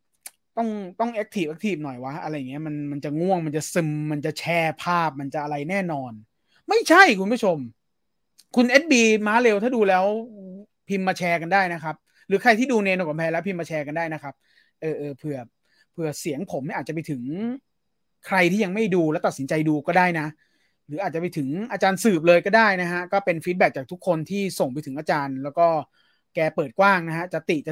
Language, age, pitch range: English, 30-49, 150-200 Hz